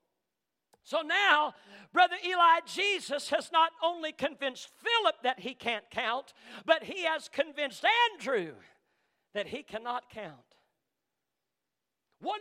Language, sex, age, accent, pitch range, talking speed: English, male, 50-69, American, 300-395 Hz, 115 wpm